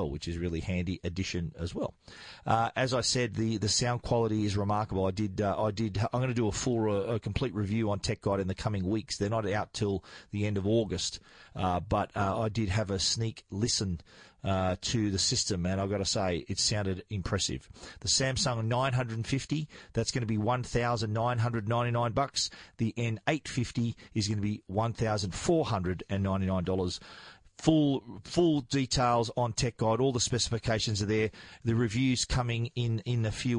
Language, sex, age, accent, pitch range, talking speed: English, male, 40-59, Australian, 100-120 Hz, 215 wpm